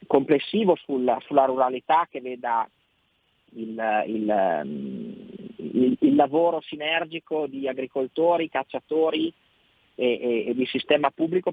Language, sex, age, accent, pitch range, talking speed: Italian, male, 30-49, native, 120-140 Hz, 95 wpm